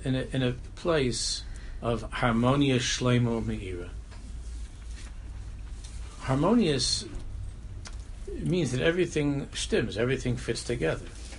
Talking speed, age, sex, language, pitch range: 90 wpm, 60-79, male, English, 90-125 Hz